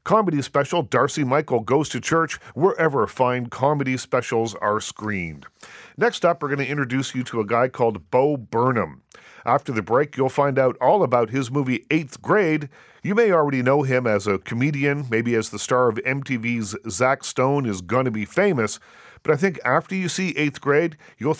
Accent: American